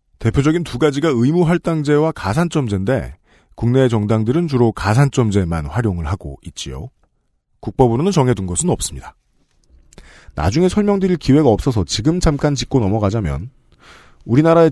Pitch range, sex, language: 105-160 Hz, male, Korean